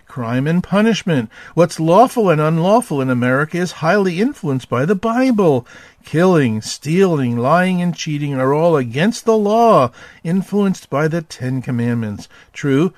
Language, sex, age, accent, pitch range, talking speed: English, male, 50-69, American, 130-190 Hz, 145 wpm